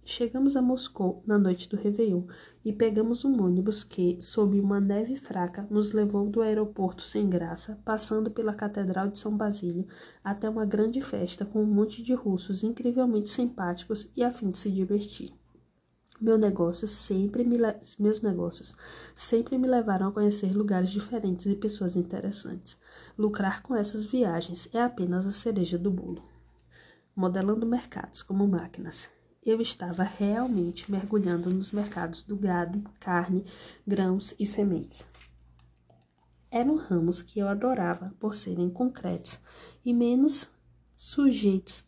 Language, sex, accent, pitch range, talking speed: Portuguese, female, Brazilian, 185-225 Hz, 135 wpm